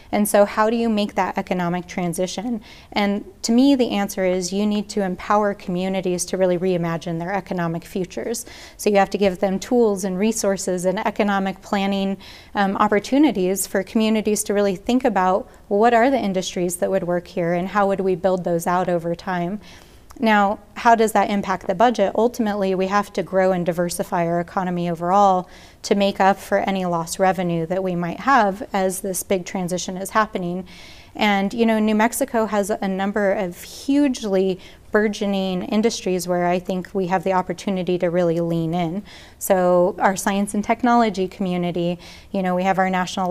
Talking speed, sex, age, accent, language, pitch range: 185 wpm, female, 30-49, American, English, 185-210 Hz